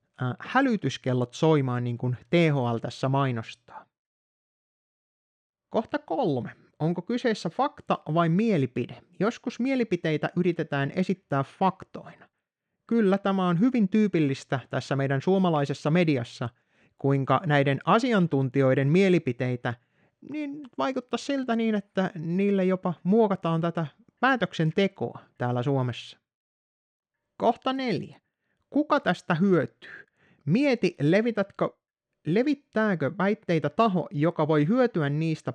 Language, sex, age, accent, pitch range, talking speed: Finnish, male, 30-49, native, 135-205 Hz, 95 wpm